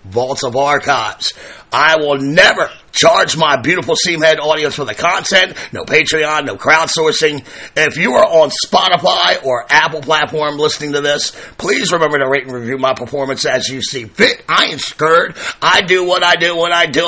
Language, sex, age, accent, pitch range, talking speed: English, male, 50-69, American, 140-175 Hz, 185 wpm